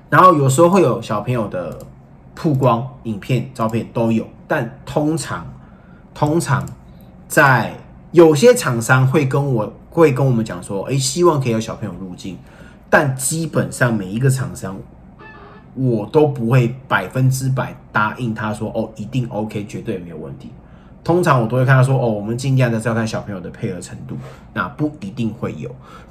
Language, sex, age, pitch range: Chinese, male, 20-39, 110-140 Hz